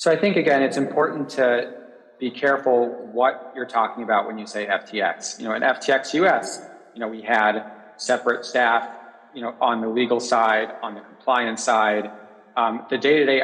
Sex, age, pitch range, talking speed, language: male, 30-49, 120-135 Hz, 185 wpm, English